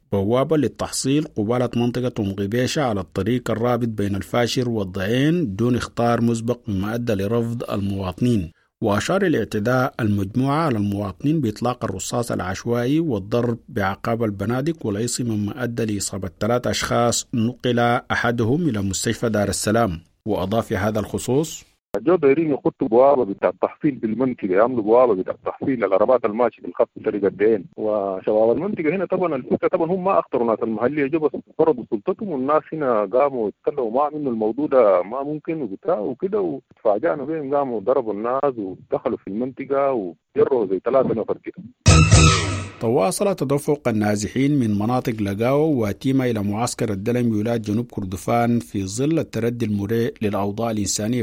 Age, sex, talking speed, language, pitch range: 50-69, male, 130 wpm, English, 105-125 Hz